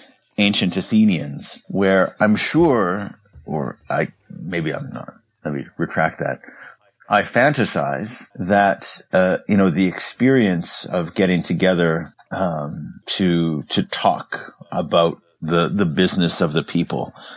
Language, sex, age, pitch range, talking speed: English, male, 50-69, 85-115 Hz, 125 wpm